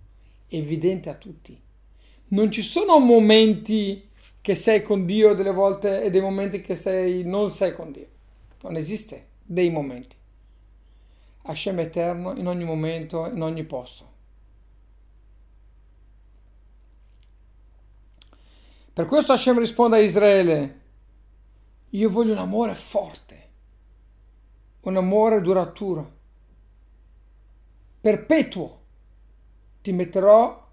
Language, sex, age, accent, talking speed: Italian, male, 50-69, native, 100 wpm